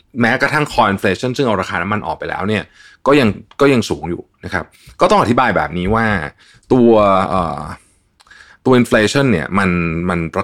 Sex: male